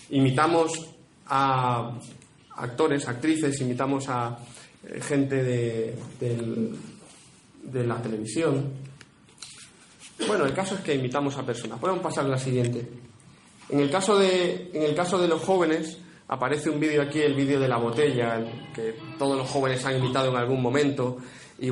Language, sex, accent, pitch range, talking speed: Spanish, male, Spanish, 125-160 Hz, 150 wpm